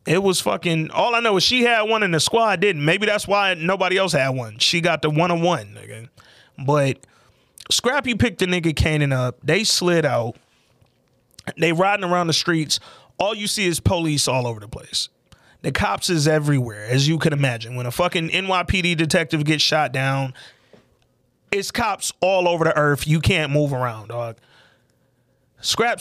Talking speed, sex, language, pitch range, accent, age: 180 wpm, male, English, 135-190 Hz, American, 30-49